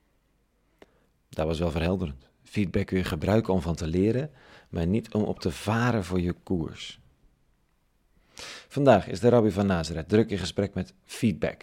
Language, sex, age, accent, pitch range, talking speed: Dutch, male, 40-59, Dutch, 85-110 Hz, 165 wpm